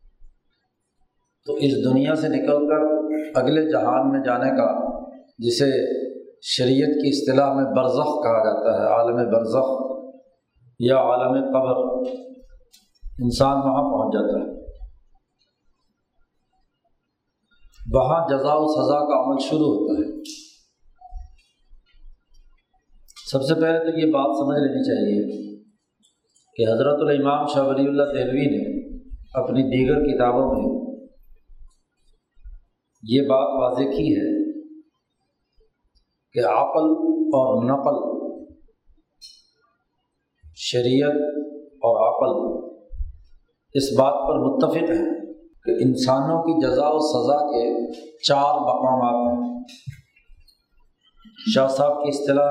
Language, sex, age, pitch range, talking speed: Urdu, male, 50-69, 125-160 Hz, 105 wpm